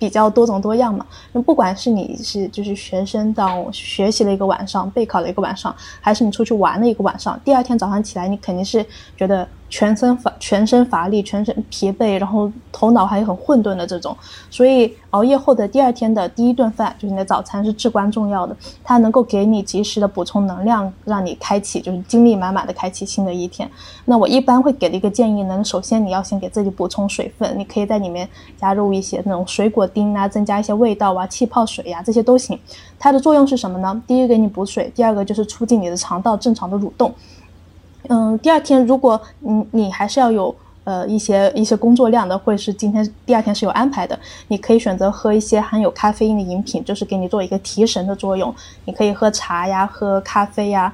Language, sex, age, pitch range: Chinese, female, 20-39, 195-235 Hz